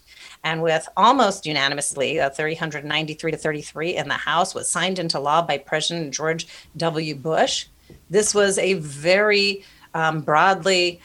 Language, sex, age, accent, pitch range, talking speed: English, female, 40-59, American, 150-185 Hz, 140 wpm